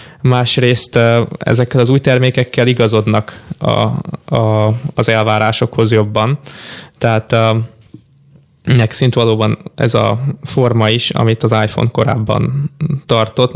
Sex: male